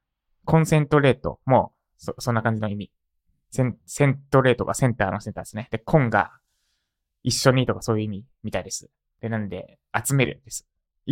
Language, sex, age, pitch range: Japanese, male, 20-39, 95-125 Hz